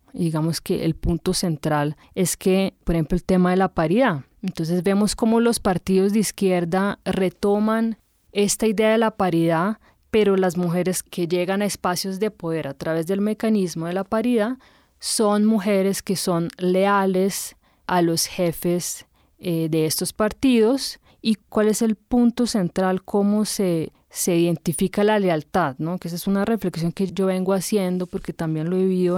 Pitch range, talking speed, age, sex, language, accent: 175-210 Hz, 170 wpm, 20-39, female, Spanish, Colombian